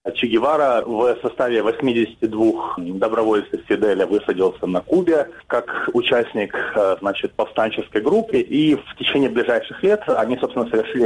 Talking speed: 115 wpm